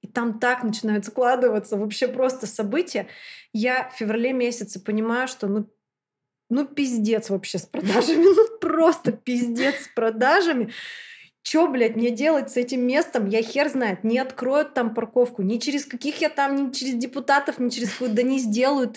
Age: 20-39